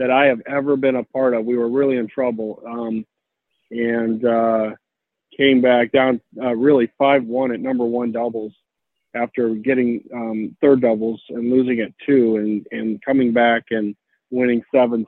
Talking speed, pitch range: 170 wpm, 115-130 Hz